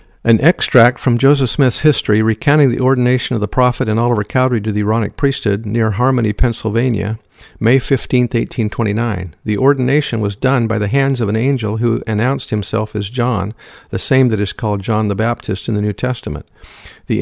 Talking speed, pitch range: 185 wpm, 105-130 Hz